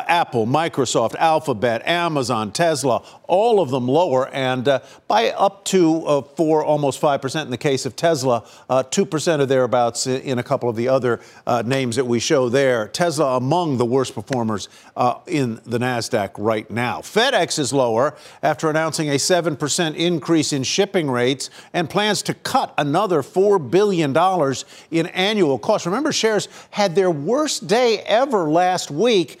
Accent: American